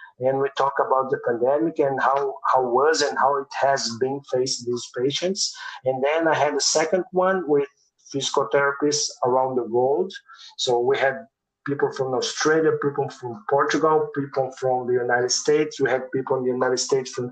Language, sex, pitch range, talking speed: English, male, 130-150 Hz, 185 wpm